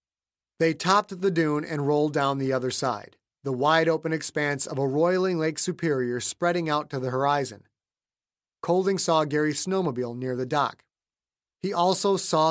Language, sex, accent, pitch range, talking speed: English, male, American, 135-175 Hz, 160 wpm